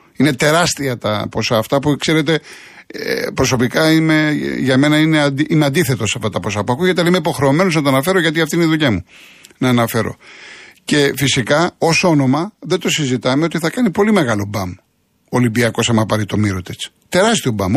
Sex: male